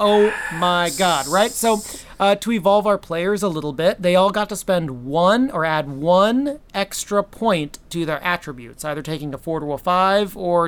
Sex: male